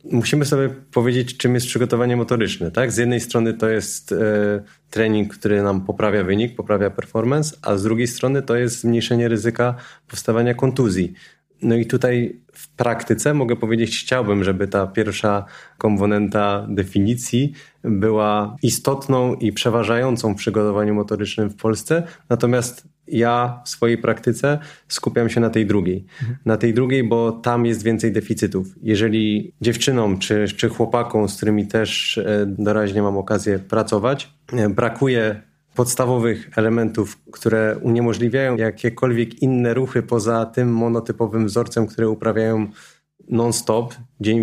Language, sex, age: Polish, male, 20-39